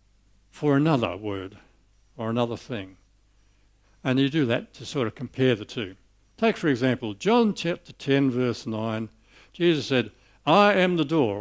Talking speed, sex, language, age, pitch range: 160 wpm, male, English, 60-79, 105-150 Hz